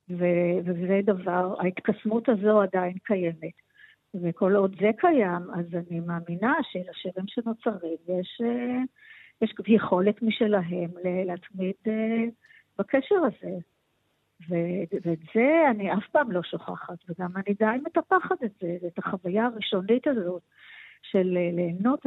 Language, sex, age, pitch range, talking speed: Hebrew, female, 50-69, 185-235 Hz, 110 wpm